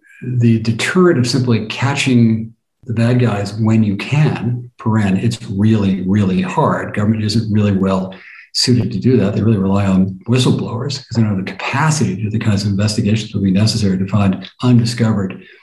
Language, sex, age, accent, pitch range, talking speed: English, male, 60-79, American, 105-120 Hz, 185 wpm